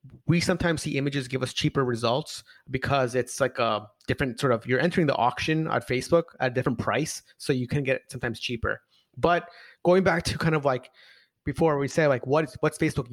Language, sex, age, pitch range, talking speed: English, male, 30-49, 125-160 Hz, 205 wpm